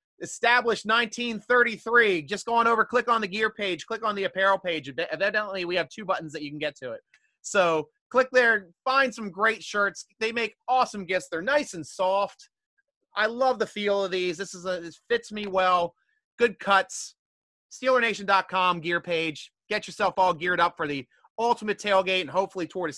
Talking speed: 190 wpm